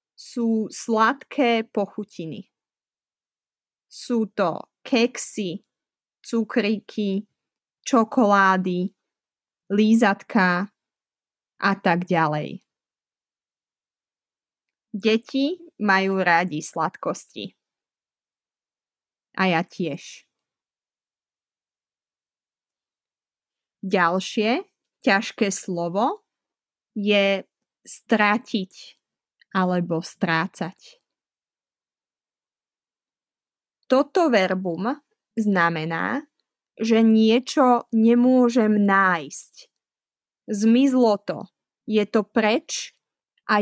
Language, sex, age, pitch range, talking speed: Slovak, female, 20-39, 190-235 Hz, 55 wpm